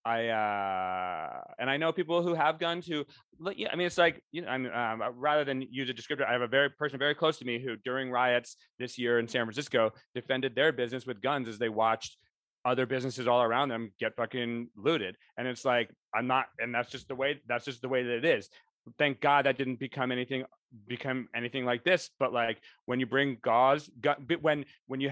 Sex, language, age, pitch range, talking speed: male, English, 30-49, 115-135 Hz, 225 wpm